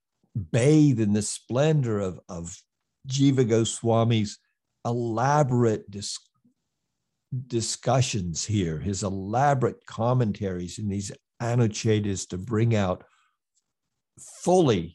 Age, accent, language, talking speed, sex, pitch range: 60-79, American, English, 85 wpm, male, 100-130 Hz